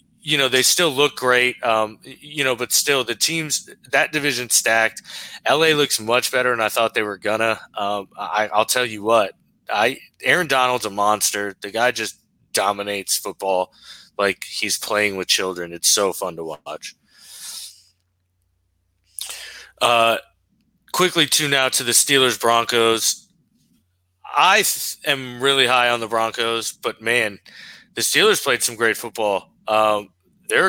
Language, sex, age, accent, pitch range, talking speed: English, male, 20-39, American, 100-125 Hz, 150 wpm